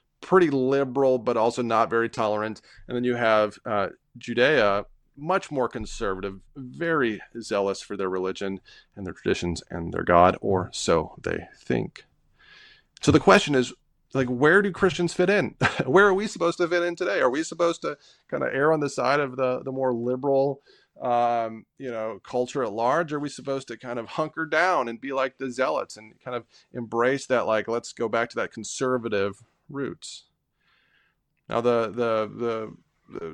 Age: 30-49